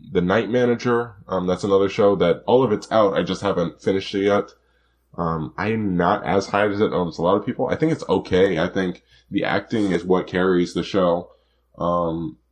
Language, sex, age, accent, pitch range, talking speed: English, male, 10-29, American, 80-95 Hz, 210 wpm